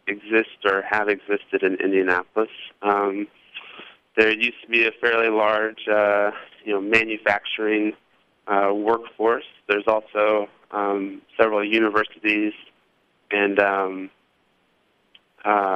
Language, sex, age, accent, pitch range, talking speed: English, male, 20-39, American, 95-110 Hz, 105 wpm